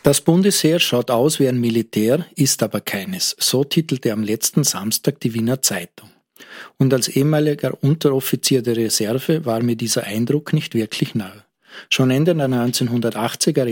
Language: German